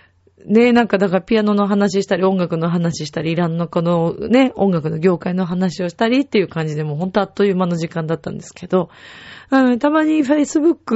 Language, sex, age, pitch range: Japanese, female, 30-49, 160-210 Hz